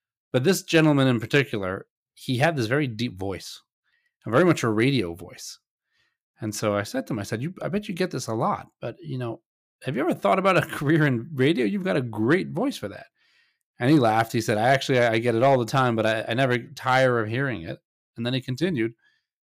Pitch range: 105-135 Hz